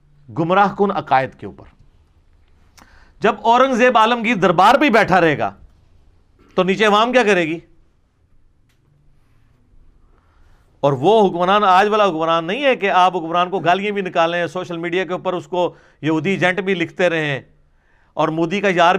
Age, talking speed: 50-69, 155 wpm